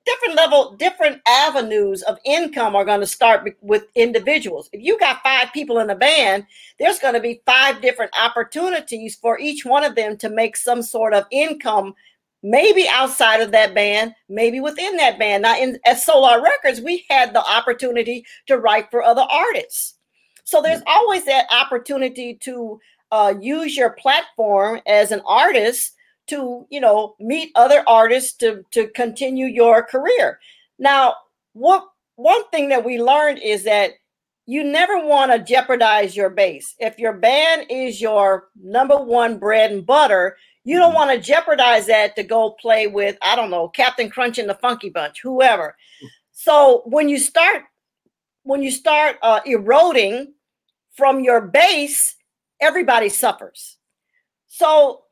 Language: English